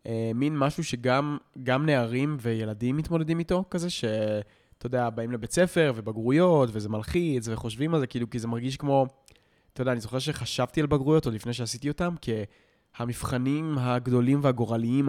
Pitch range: 115-150 Hz